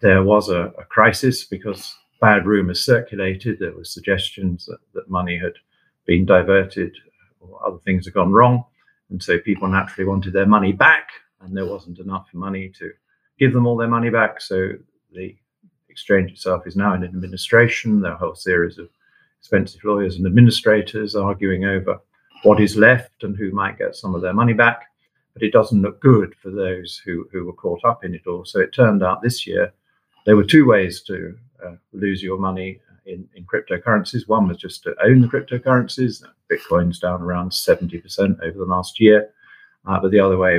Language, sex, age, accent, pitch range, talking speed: English, male, 50-69, British, 90-105 Hz, 190 wpm